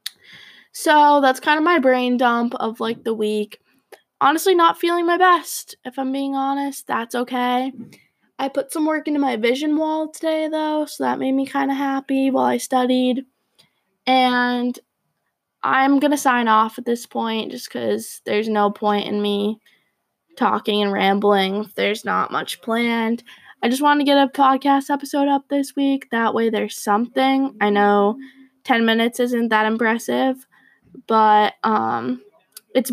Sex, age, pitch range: female, 10-29, 225-275 Hz